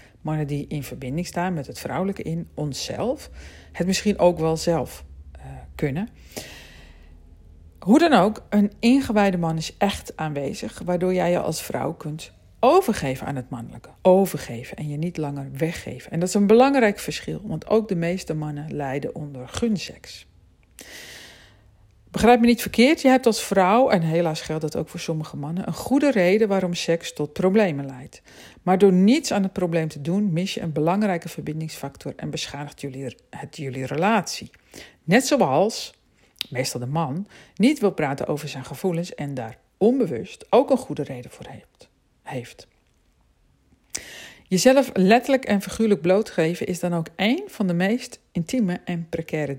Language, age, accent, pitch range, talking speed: Dutch, 50-69, Dutch, 145-200 Hz, 160 wpm